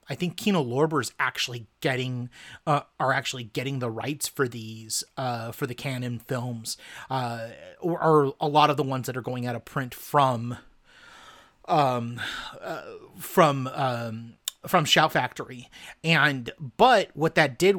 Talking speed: 160 wpm